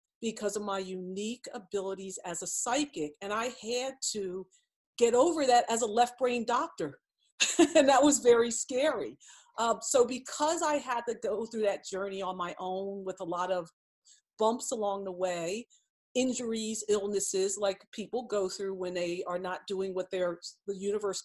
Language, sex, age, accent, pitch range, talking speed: English, female, 50-69, American, 195-245 Hz, 170 wpm